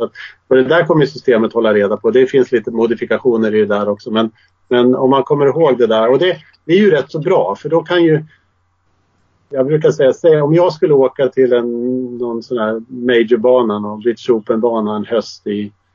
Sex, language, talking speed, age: male, English, 205 wpm, 40-59